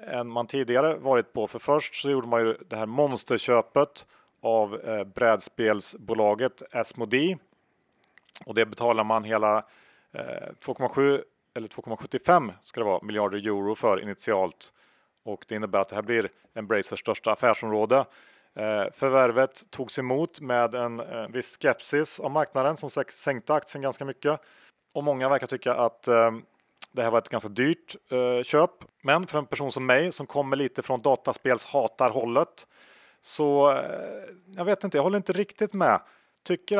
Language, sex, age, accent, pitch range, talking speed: Swedish, male, 40-59, Norwegian, 115-145 Hz, 145 wpm